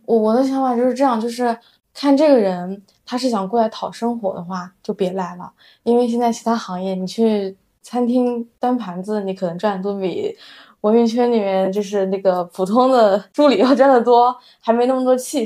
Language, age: Chinese, 20-39